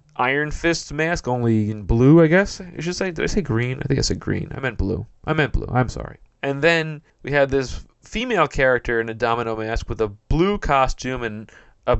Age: 30-49